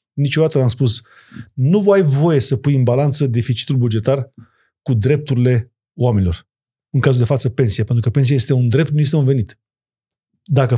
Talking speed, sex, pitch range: 180 wpm, male, 130-170 Hz